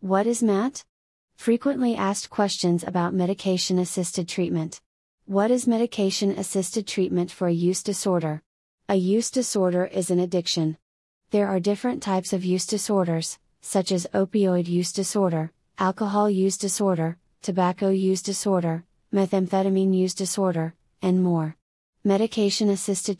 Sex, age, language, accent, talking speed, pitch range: female, 30-49, English, American, 120 wpm, 175-200 Hz